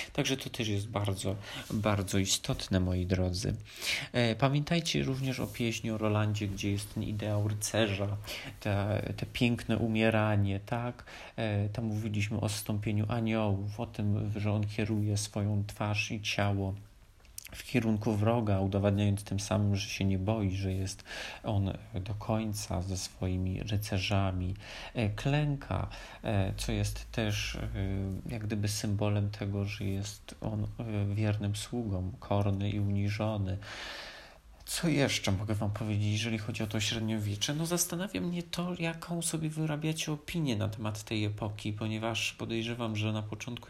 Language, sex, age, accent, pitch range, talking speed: Polish, male, 30-49, native, 100-115 Hz, 140 wpm